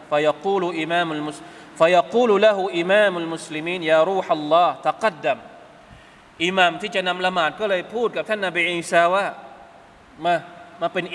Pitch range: 150-185 Hz